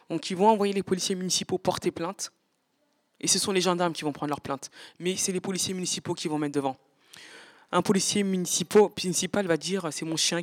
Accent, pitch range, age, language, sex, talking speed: French, 155-195 Hz, 20-39, French, female, 205 wpm